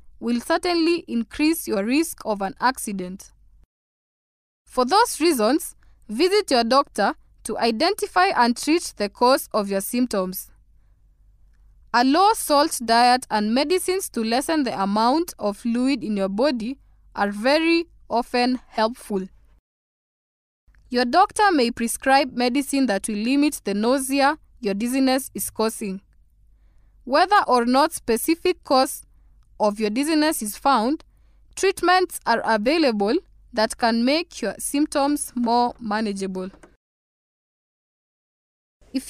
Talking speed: 115 wpm